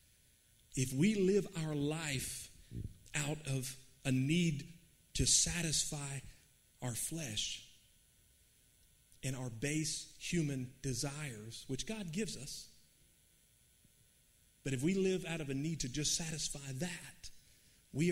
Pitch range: 130-175 Hz